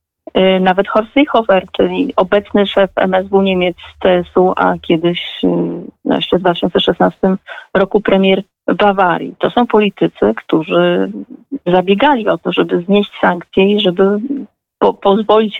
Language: Polish